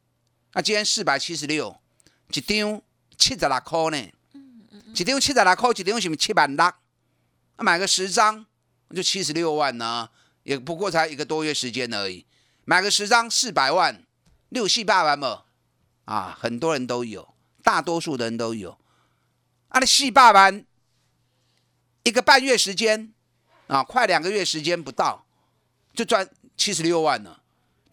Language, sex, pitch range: Chinese, male, 145-215 Hz